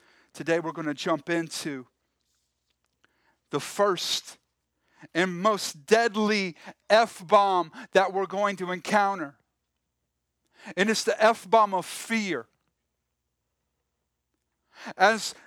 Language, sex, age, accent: English, male, 40-59, American